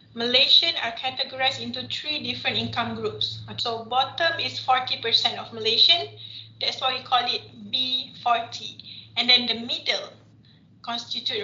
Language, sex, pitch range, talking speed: English, female, 230-275 Hz, 130 wpm